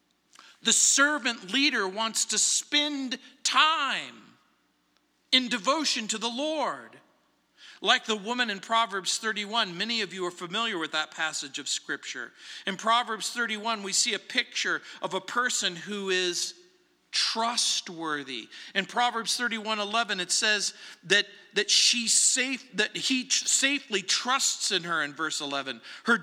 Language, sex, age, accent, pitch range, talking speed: English, male, 50-69, American, 185-255 Hz, 140 wpm